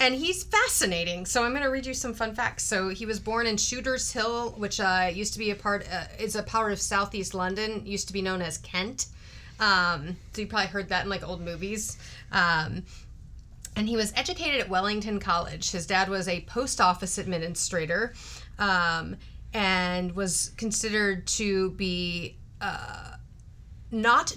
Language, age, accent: English, 30-49, American